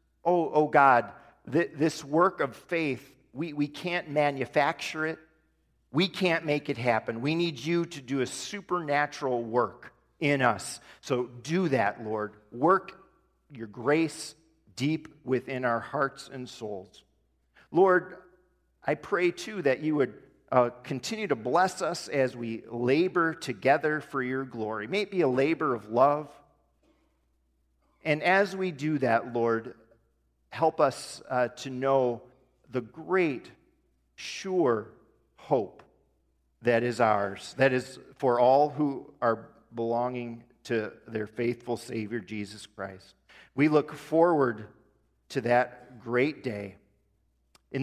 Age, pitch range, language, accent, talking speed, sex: 50-69, 120-155 Hz, English, American, 135 wpm, male